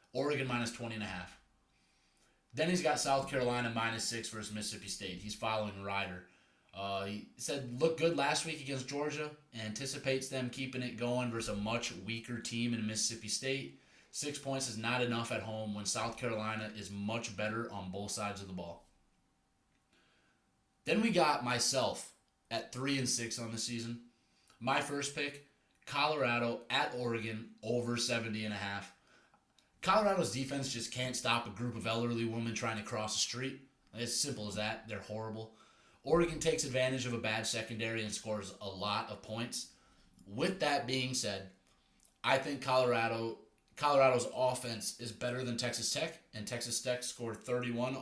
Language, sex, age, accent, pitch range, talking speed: English, male, 20-39, American, 110-135 Hz, 170 wpm